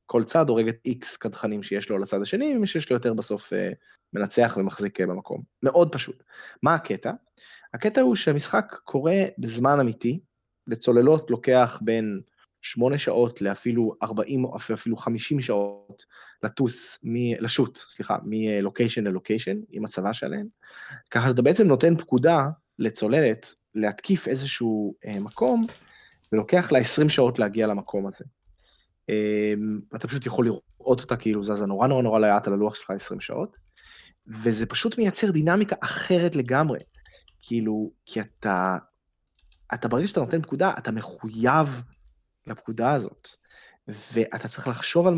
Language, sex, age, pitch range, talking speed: Hebrew, male, 20-39, 110-140 Hz, 135 wpm